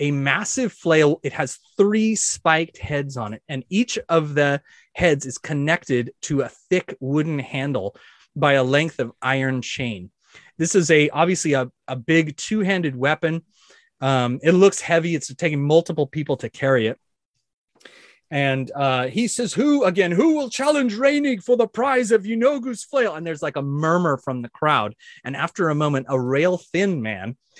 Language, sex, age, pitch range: English, male, 30-49, 135-200 Hz